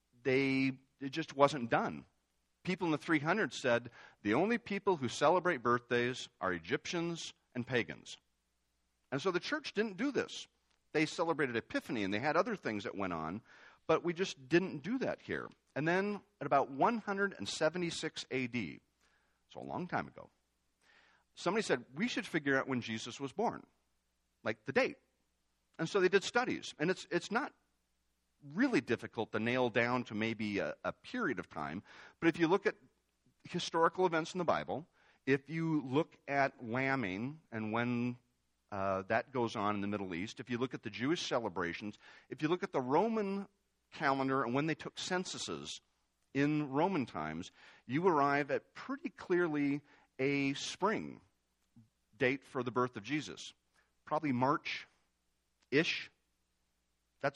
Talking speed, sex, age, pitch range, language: 160 wpm, male, 50-69, 100-165 Hz, English